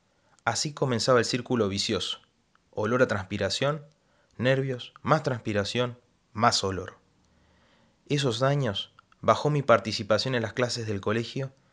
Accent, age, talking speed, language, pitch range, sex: Argentinian, 20-39, 120 wpm, Spanish, 105-135 Hz, male